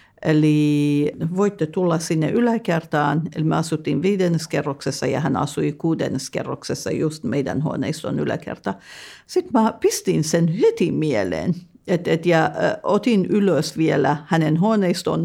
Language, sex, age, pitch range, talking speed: Finnish, female, 50-69, 160-210 Hz, 125 wpm